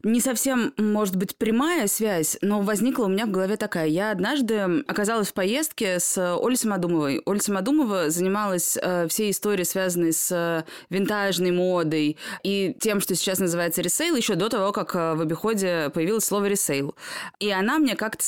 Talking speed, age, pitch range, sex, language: 160 wpm, 20-39, 180-230 Hz, female, Russian